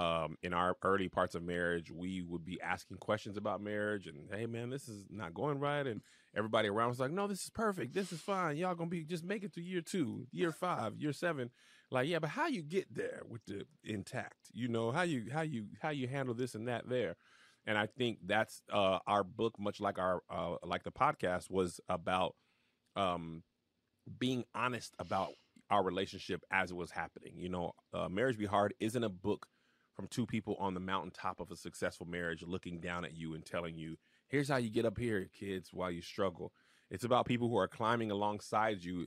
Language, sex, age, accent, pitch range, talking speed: English, male, 30-49, American, 90-120 Hz, 215 wpm